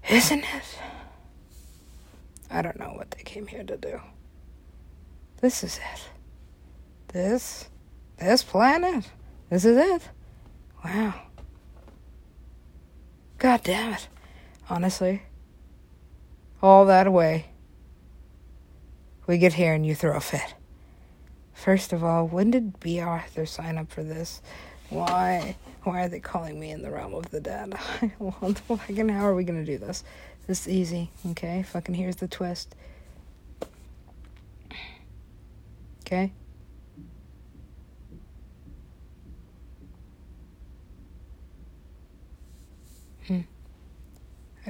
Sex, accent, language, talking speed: female, American, English, 105 wpm